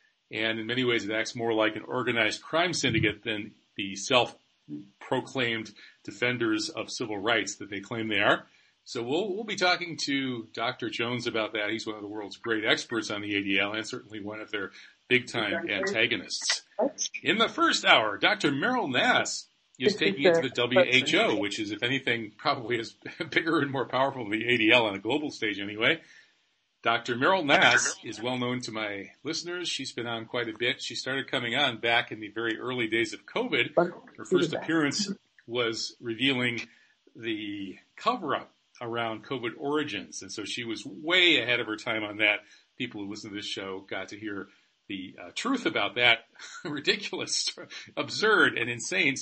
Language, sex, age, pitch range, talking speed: English, male, 40-59, 110-125 Hz, 180 wpm